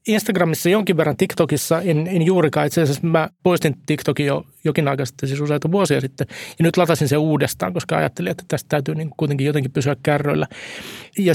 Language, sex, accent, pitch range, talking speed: Finnish, male, native, 140-165 Hz, 190 wpm